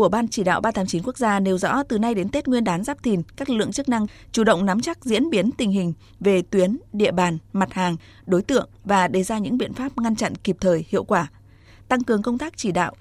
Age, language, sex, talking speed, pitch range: 20-39, Vietnamese, female, 260 wpm, 180-235 Hz